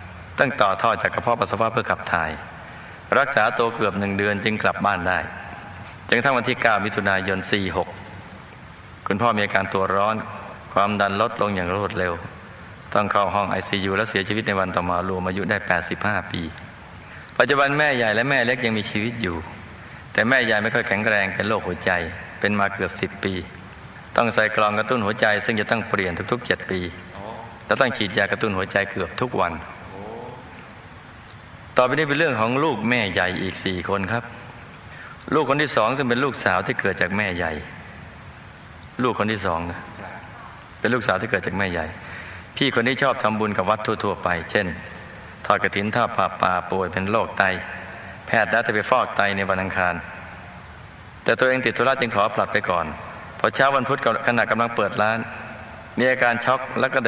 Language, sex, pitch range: Thai, male, 95-115 Hz